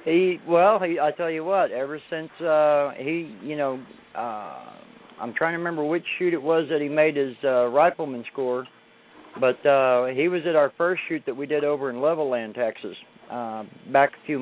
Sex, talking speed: male, 200 wpm